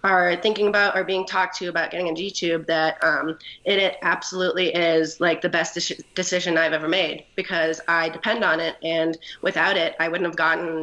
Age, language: 20-39, English